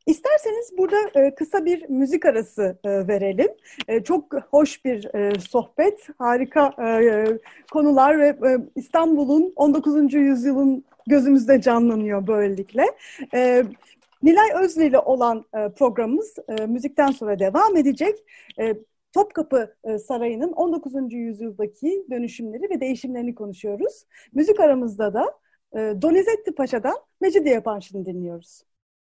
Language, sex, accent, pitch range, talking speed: Turkish, female, native, 215-310 Hz, 95 wpm